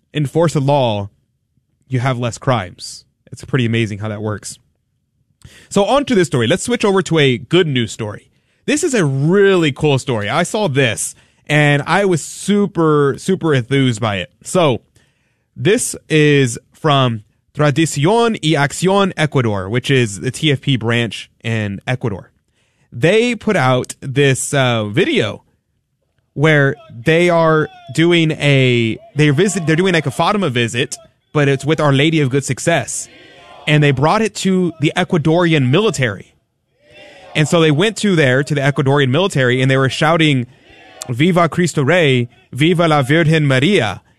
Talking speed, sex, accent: 150 wpm, male, American